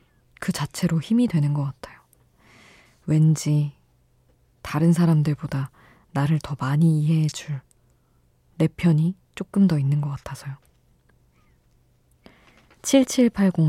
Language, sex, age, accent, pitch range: Korean, female, 20-39, native, 145-175 Hz